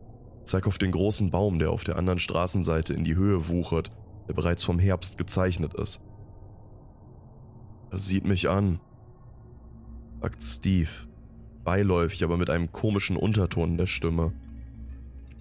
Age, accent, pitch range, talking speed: 20-39, German, 90-105 Hz, 140 wpm